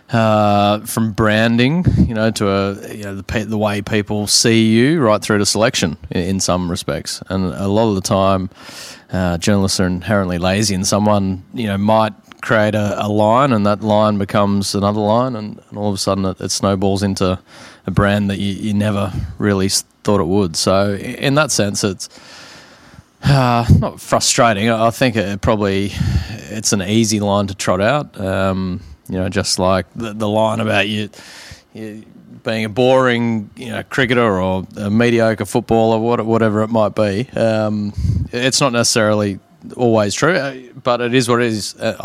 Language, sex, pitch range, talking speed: English, male, 95-115 Hz, 175 wpm